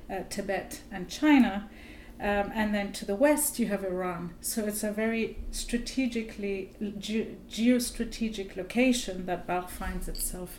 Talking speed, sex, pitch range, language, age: 135 wpm, female, 200-240 Hz, English, 40-59